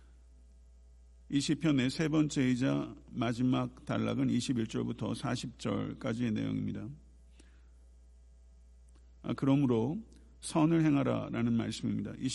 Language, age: Korean, 50-69